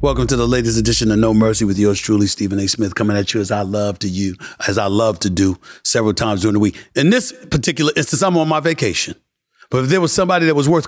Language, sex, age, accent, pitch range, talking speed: English, male, 40-59, American, 100-145 Hz, 265 wpm